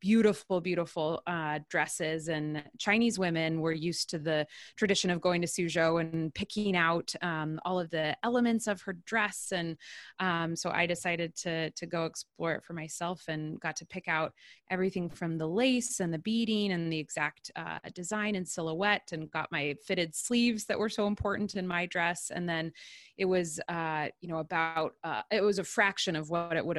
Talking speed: 195 wpm